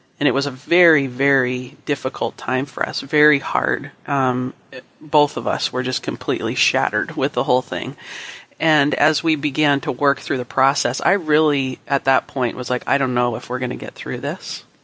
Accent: American